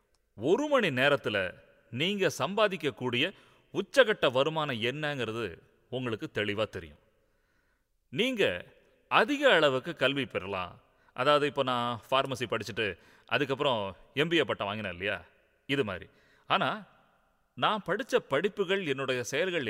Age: 30-49